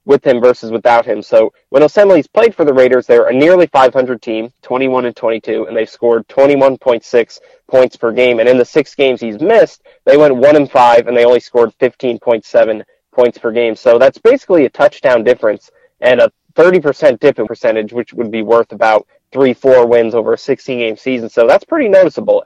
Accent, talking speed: American, 200 wpm